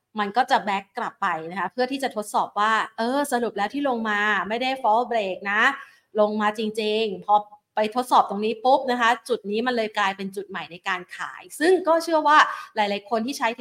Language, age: Thai, 30-49